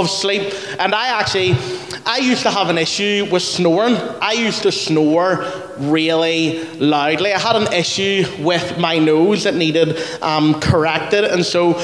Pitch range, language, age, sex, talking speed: 155-200 Hz, English, 20-39, male, 160 wpm